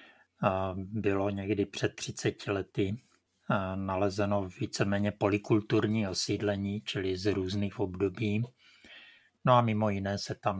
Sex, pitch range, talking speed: male, 95-110 Hz, 110 wpm